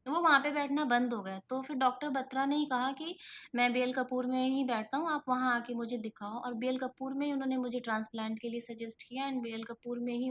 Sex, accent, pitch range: female, native, 220-260 Hz